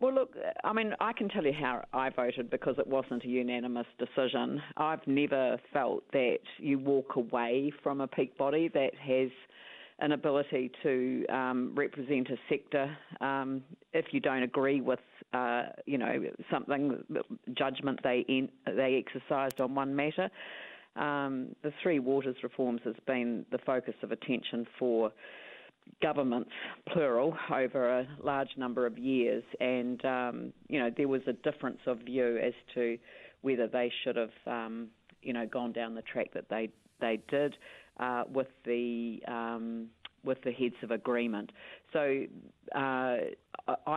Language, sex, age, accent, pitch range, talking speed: English, female, 40-59, Australian, 120-140 Hz, 155 wpm